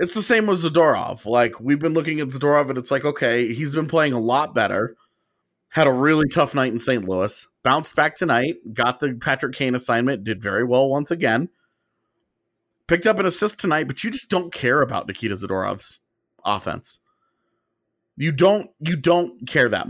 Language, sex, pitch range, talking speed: English, male, 120-155 Hz, 185 wpm